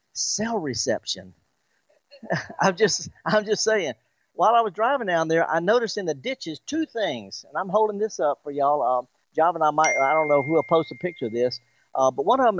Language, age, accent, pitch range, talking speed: English, 50-69, American, 150-215 Hz, 230 wpm